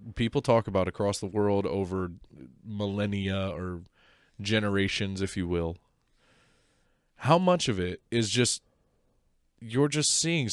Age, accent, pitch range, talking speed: 20-39, American, 95-115 Hz, 125 wpm